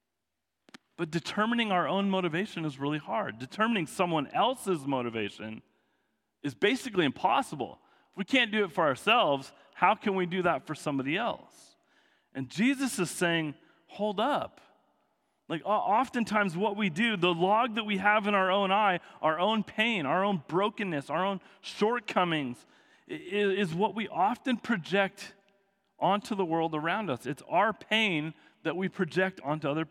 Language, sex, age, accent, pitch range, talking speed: English, male, 40-59, American, 160-210 Hz, 155 wpm